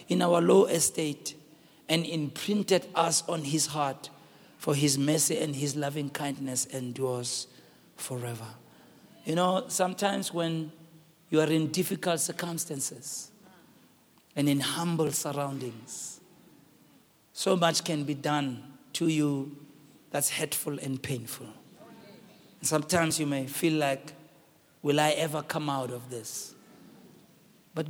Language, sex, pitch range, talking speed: English, male, 140-175 Hz, 120 wpm